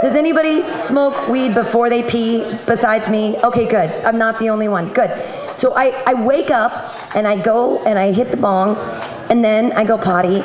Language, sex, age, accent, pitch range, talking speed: English, female, 40-59, American, 185-245 Hz, 200 wpm